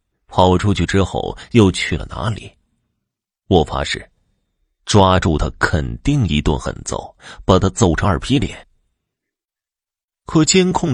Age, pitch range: 30-49, 80-120 Hz